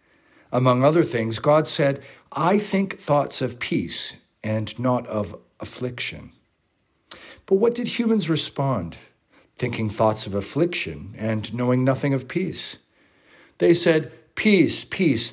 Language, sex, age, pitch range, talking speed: English, male, 50-69, 115-175 Hz, 125 wpm